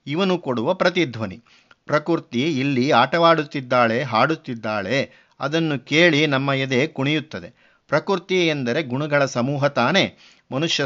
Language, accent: Kannada, native